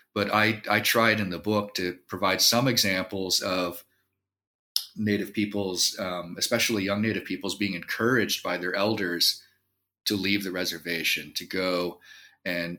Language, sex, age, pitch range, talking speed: English, male, 30-49, 90-115 Hz, 145 wpm